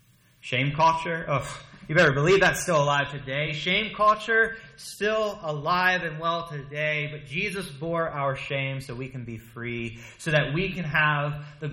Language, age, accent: English, 30-49, American